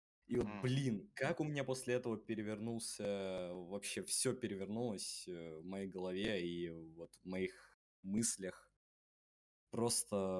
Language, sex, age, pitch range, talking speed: Russian, male, 20-39, 95-115 Hz, 120 wpm